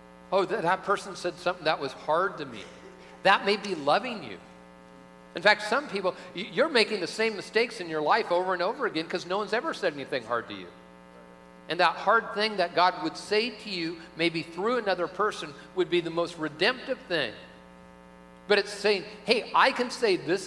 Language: English